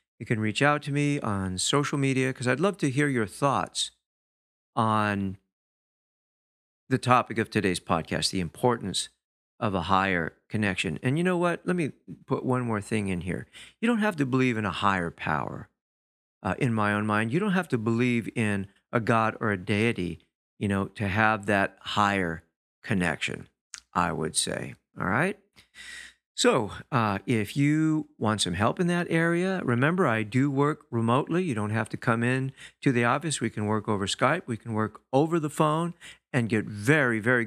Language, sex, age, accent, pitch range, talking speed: English, male, 50-69, American, 105-140 Hz, 185 wpm